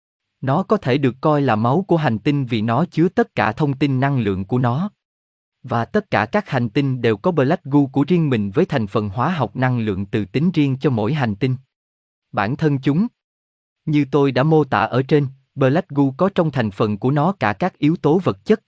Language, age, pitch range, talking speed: Vietnamese, 20-39, 110-165 Hz, 230 wpm